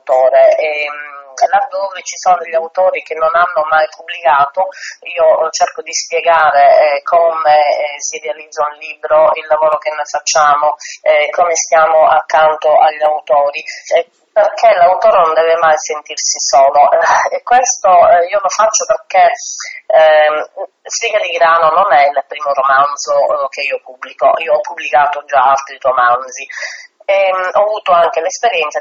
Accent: native